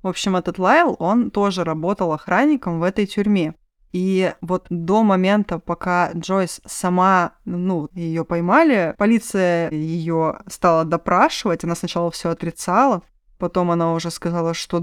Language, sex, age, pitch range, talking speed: Russian, female, 20-39, 165-185 Hz, 140 wpm